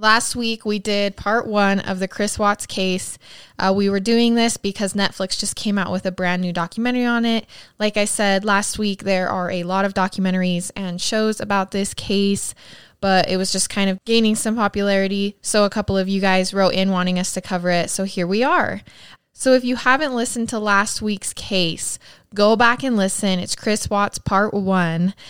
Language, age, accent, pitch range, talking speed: English, 20-39, American, 185-215 Hz, 210 wpm